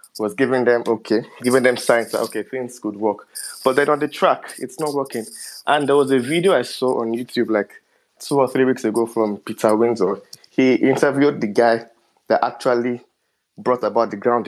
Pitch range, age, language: 110-125 Hz, 20-39, English